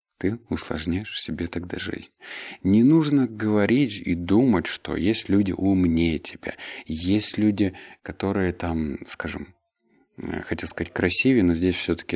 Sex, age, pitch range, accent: male, 30-49, 85-110 Hz, native